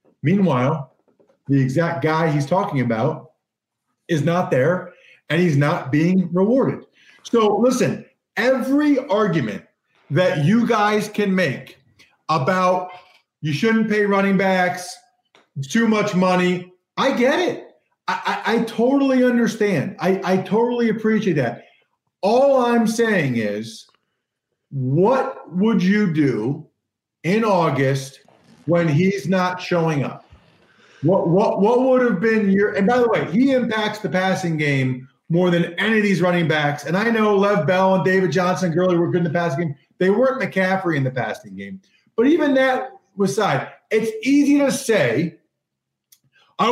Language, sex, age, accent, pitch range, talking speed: English, male, 40-59, American, 165-220 Hz, 150 wpm